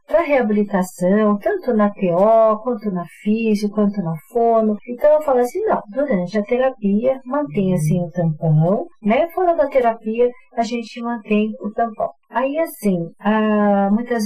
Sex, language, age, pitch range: female, Portuguese, 50-69, 185-250 Hz